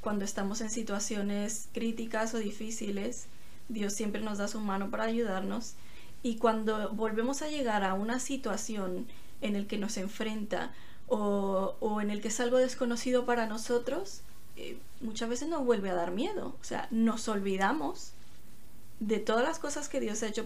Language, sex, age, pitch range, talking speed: Spanish, female, 20-39, 215-260 Hz, 170 wpm